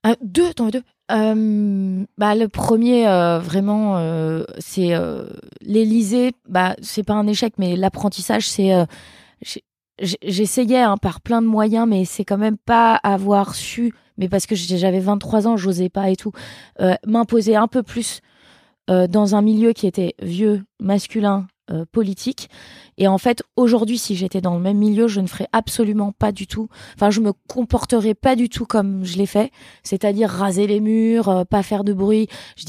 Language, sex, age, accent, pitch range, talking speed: French, female, 20-39, French, 190-225 Hz, 185 wpm